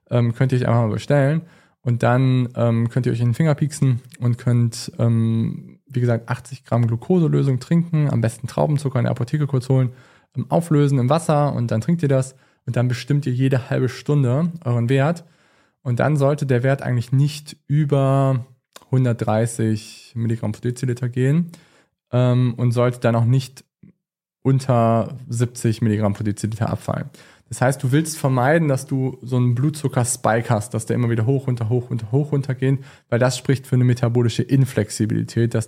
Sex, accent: male, German